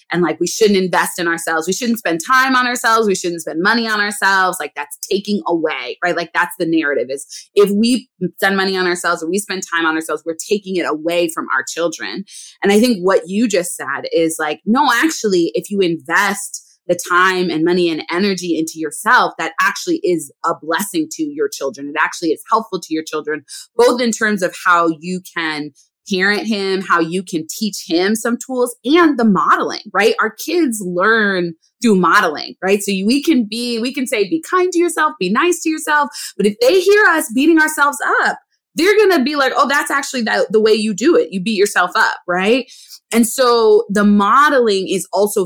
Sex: female